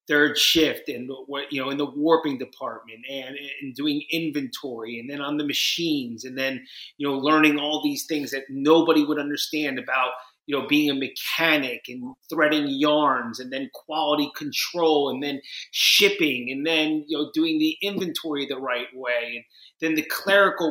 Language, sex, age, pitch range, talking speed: English, male, 30-49, 135-175 Hz, 175 wpm